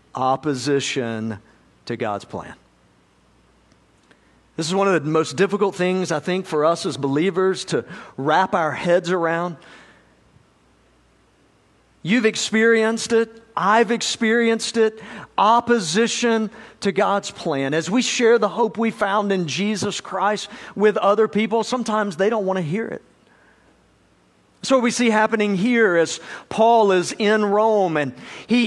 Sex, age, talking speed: male, 50-69, 140 wpm